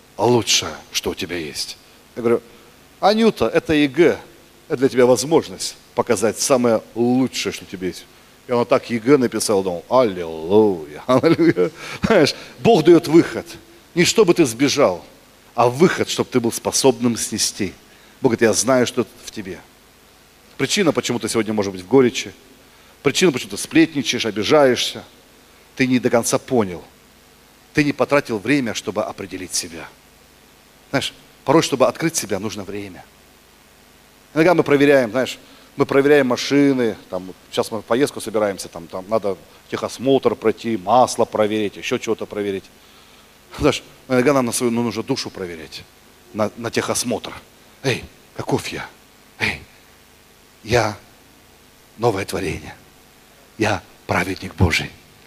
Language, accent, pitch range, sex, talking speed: Russian, native, 100-135 Hz, male, 140 wpm